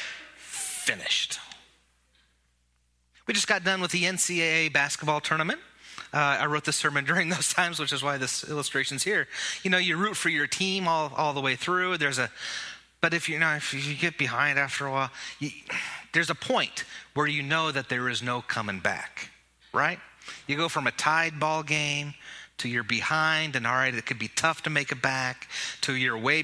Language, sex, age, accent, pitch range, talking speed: English, male, 30-49, American, 110-155 Hz, 195 wpm